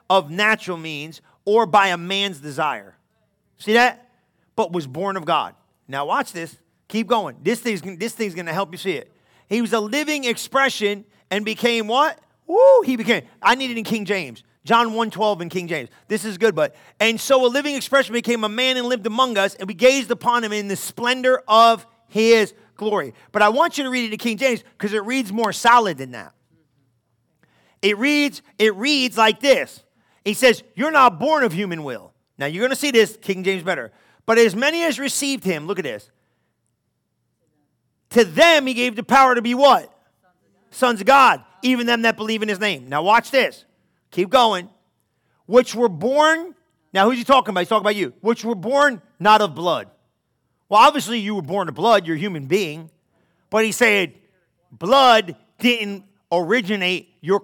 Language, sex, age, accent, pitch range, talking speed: English, male, 40-59, American, 190-245 Hz, 195 wpm